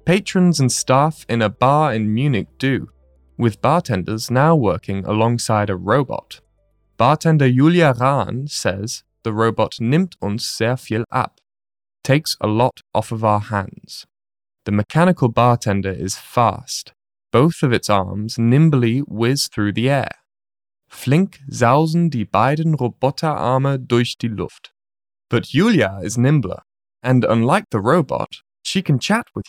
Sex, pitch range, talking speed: male, 110-150 Hz, 140 wpm